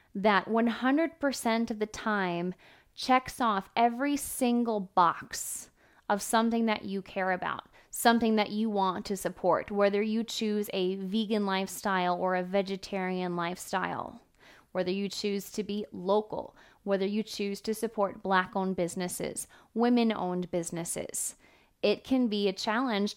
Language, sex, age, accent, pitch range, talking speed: English, female, 20-39, American, 185-225 Hz, 135 wpm